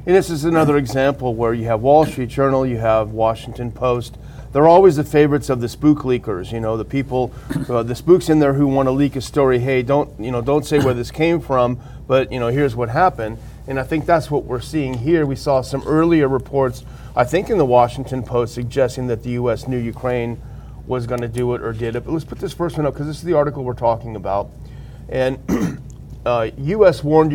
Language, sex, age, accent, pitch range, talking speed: English, male, 40-59, American, 125-150 Hz, 235 wpm